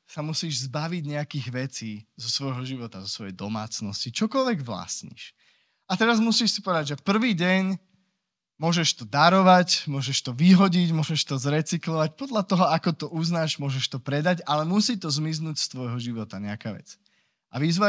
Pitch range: 140-185 Hz